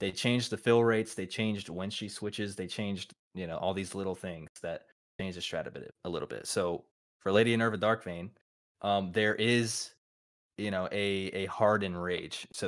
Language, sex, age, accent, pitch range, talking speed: English, male, 20-39, American, 90-105 Hz, 205 wpm